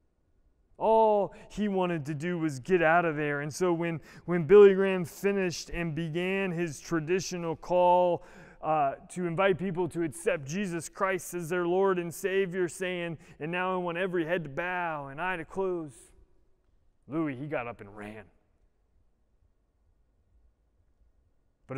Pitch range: 105-170 Hz